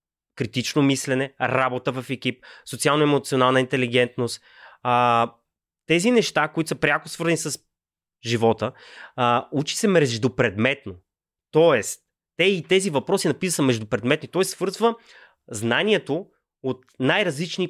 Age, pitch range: 20-39, 125-165 Hz